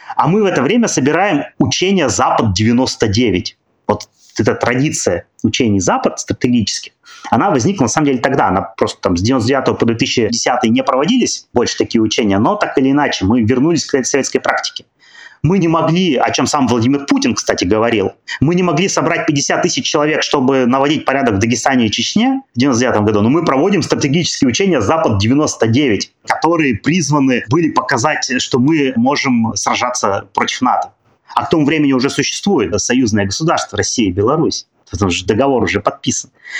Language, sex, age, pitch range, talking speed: Russian, male, 30-49, 125-165 Hz, 165 wpm